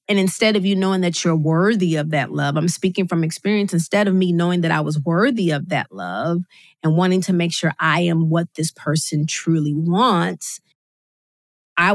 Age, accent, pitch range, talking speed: 30-49, American, 175-225 Hz, 195 wpm